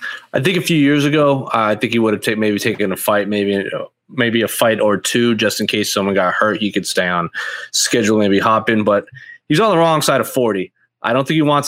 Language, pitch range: English, 105-130 Hz